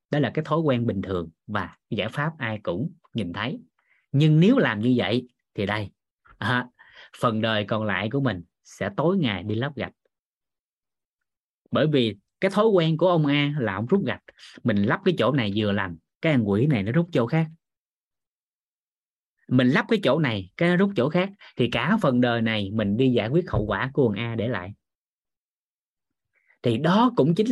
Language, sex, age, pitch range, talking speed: Vietnamese, male, 20-39, 110-170 Hz, 200 wpm